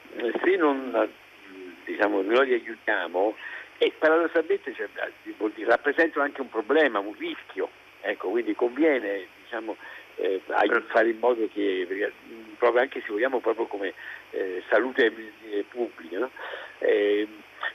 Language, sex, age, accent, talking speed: Italian, male, 60-79, native, 115 wpm